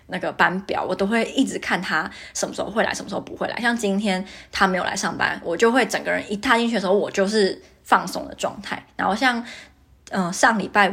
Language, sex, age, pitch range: Chinese, female, 20-39, 185-220 Hz